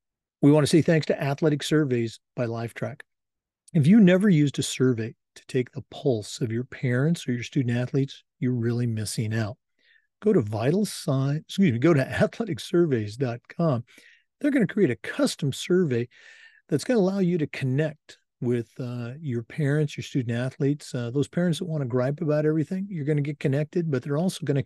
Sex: male